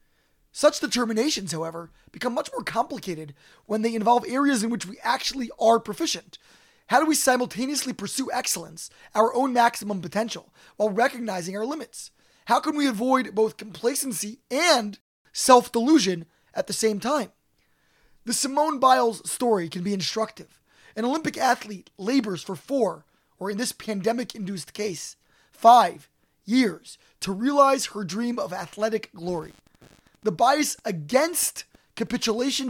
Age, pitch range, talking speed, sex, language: 20-39, 195-255 Hz, 135 wpm, male, English